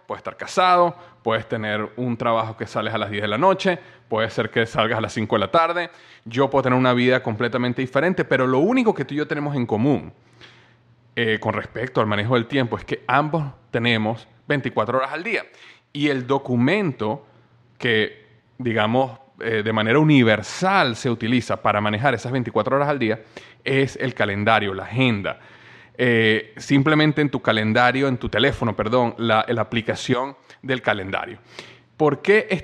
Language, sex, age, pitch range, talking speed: Spanish, male, 30-49, 115-145 Hz, 180 wpm